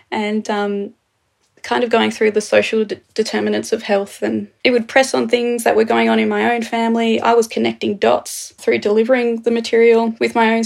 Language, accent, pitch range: English, Australian, 215-240 Hz